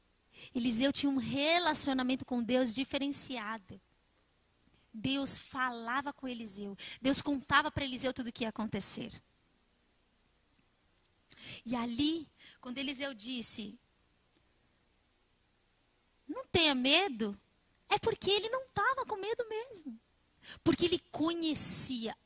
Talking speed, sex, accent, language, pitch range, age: 105 wpm, female, Brazilian, Portuguese, 235-355 Hz, 20-39